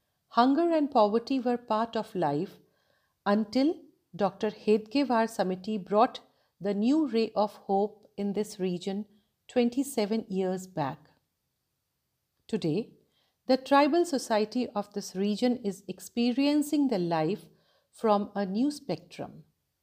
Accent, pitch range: native, 185-245 Hz